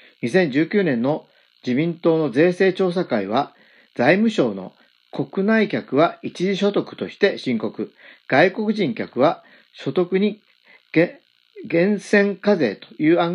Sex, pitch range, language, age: male, 155-210 Hz, Japanese, 40-59